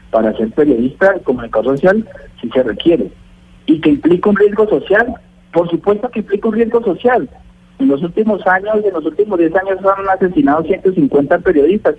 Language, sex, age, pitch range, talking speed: Spanish, male, 50-69, 140-205 Hz, 175 wpm